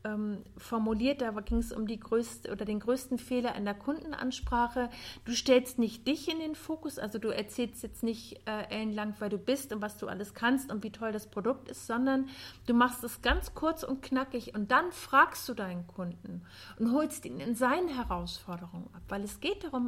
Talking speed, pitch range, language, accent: 200 wpm, 205-260 Hz, German, German